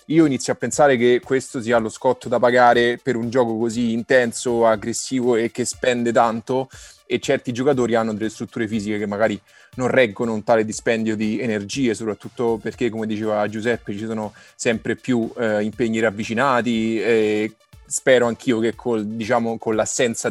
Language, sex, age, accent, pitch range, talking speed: Italian, male, 20-39, native, 110-125 Hz, 170 wpm